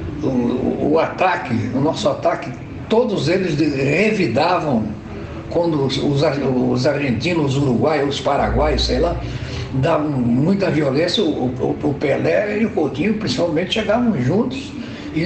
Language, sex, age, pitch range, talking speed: Portuguese, male, 60-79, 130-185 Hz, 140 wpm